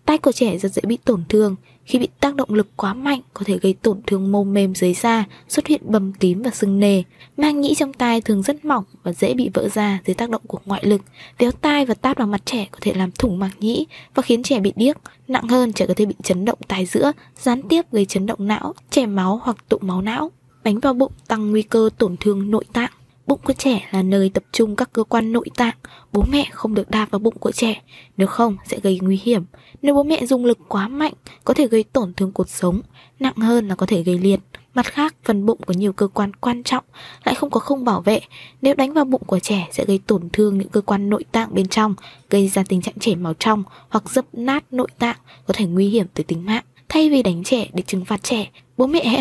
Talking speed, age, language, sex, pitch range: 255 wpm, 20-39, Vietnamese, female, 195-255 Hz